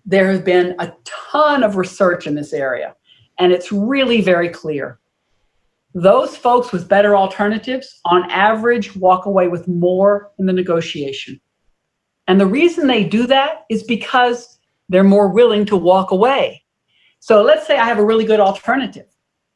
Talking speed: 160 wpm